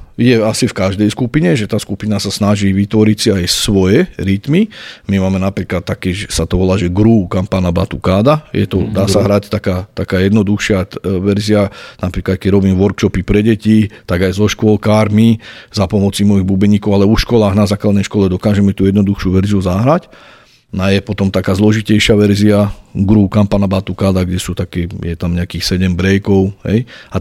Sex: male